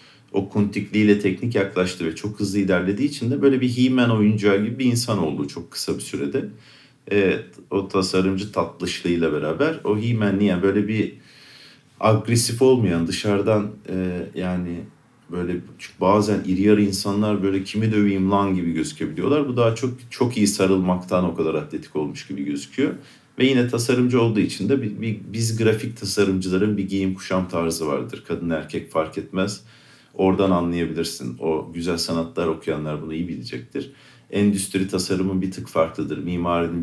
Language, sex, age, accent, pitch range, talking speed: Turkish, male, 50-69, native, 90-115 Hz, 155 wpm